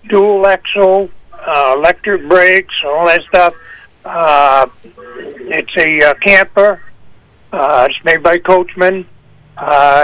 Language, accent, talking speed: English, American, 115 wpm